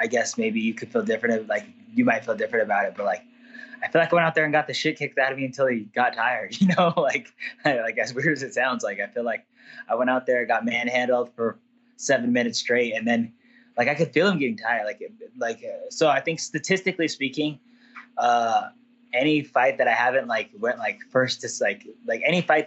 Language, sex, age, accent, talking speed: English, male, 20-39, American, 235 wpm